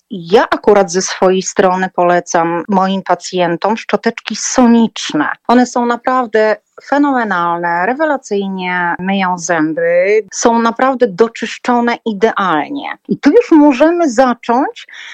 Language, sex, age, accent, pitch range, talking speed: Polish, female, 40-59, native, 185-275 Hz, 105 wpm